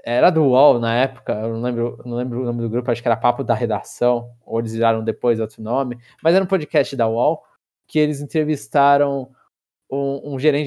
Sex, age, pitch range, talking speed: male, 20-39, 125-160 Hz, 215 wpm